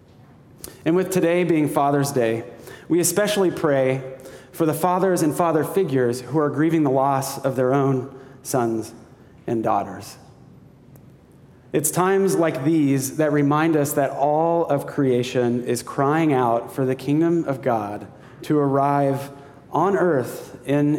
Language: English